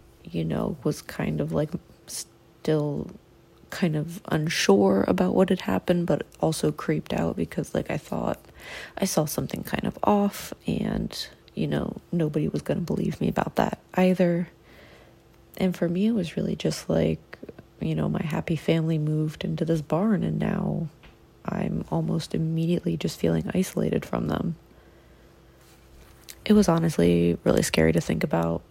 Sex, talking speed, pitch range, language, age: female, 155 wpm, 110-190 Hz, English, 30-49